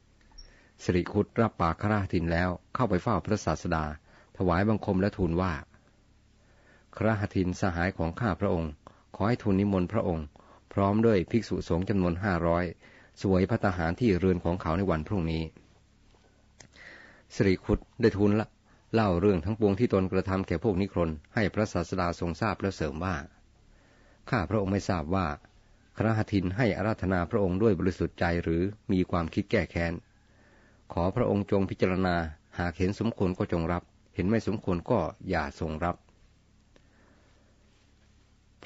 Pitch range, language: 85-105 Hz, Thai